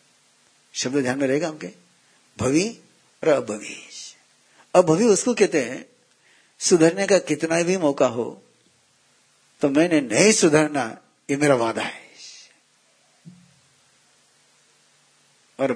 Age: 60-79